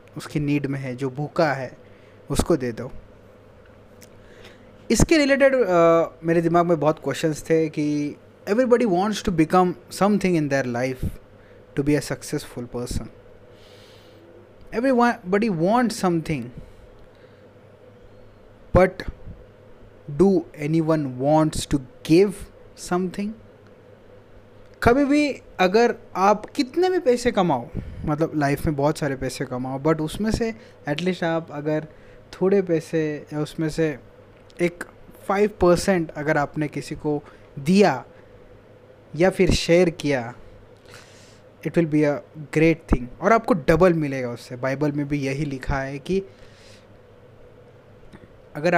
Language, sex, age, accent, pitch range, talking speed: English, male, 20-39, Indian, 125-175 Hz, 120 wpm